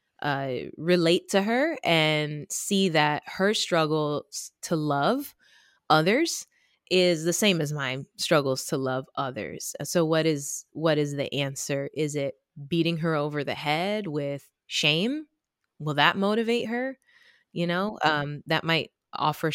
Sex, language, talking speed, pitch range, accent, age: female, English, 145 wpm, 145-185 Hz, American, 20-39